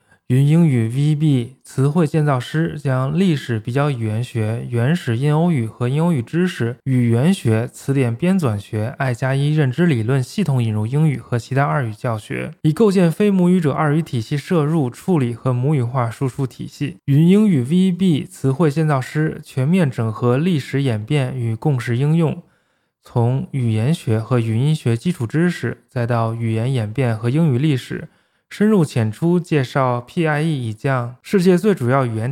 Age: 20-39